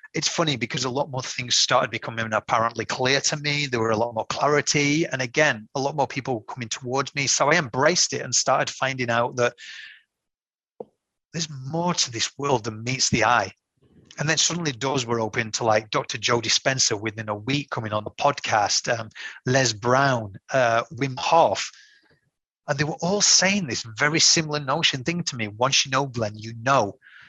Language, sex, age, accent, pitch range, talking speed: English, male, 30-49, British, 120-150 Hz, 195 wpm